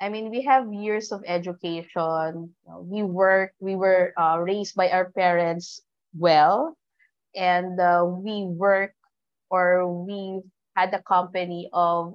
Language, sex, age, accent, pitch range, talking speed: English, female, 20-39, Filipino, 175-215 Hz, 135 wpm